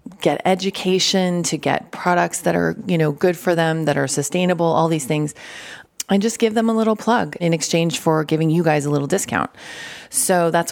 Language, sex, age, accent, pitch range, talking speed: English, female, 30-49, American, 155-185 Hz, 200 wpm